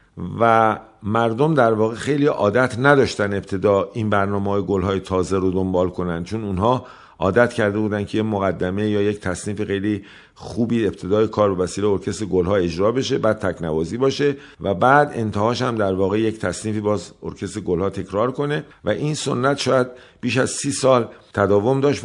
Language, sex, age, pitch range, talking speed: Persian, male, 50-69, 100-130 Hz, 175 wpm